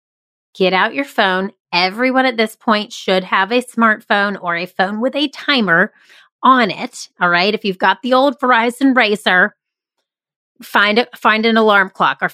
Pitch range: 185-240 Hz